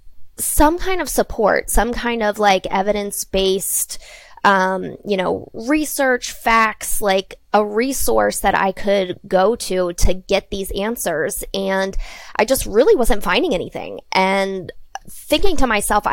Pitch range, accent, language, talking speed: 195-230 Hz, American, English, 140 wpm